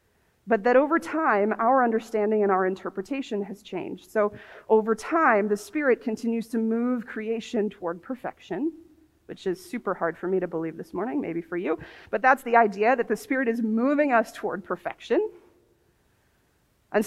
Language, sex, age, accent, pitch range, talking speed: English, female, 30-49, American, 210-265 Hz, 170 wpm